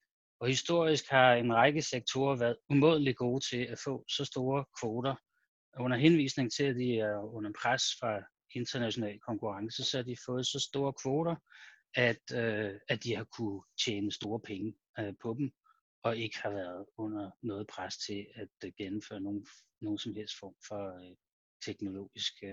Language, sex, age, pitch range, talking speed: Danish, male, 30-49, 105-135 Hz, 160 wpm